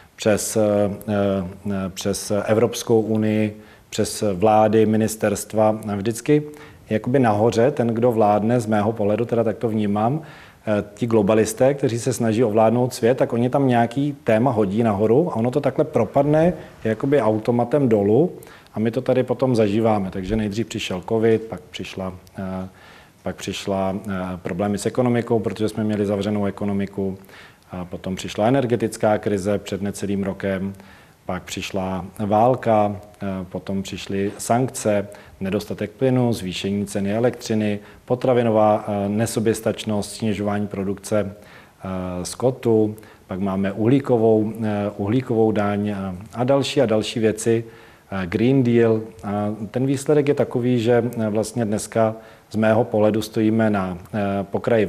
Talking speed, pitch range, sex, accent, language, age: 125 wpm, 100-115 Hz, male, native, Czech, 40-59